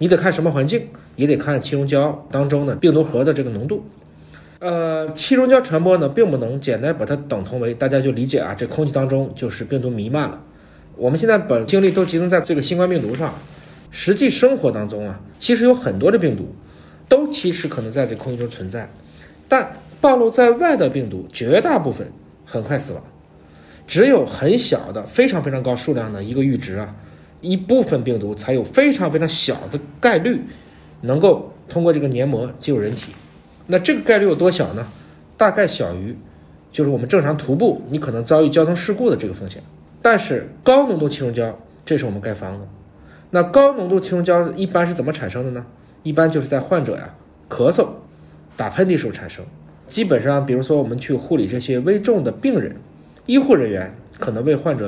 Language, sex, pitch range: Chinese, male, 110-175 Hz